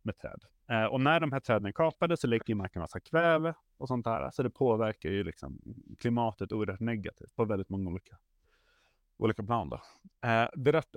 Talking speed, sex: 185 wpm, male